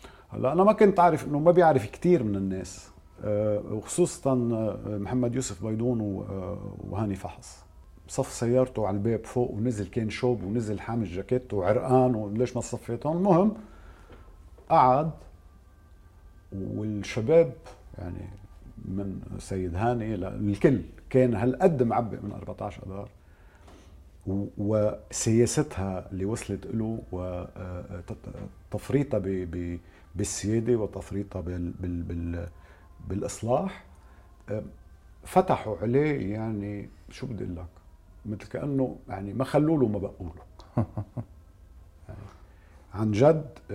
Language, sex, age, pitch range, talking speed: English, male, 50-69, 90-125 Hz, 100 wpm